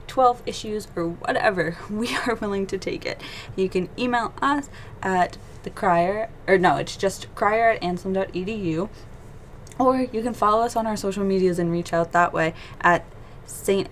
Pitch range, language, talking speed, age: 165-215 Hz, English, 175 wpm, 20-39